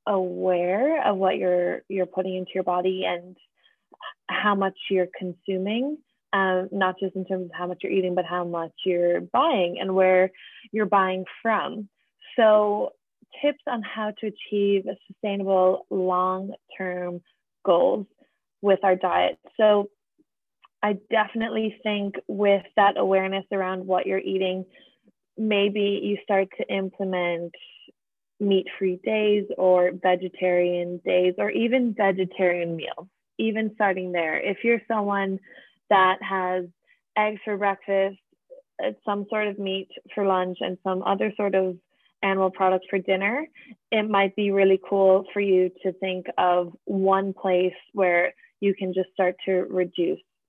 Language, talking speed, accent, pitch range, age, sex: English, 140 wpm, American, 185-205 Hz, 20-39, female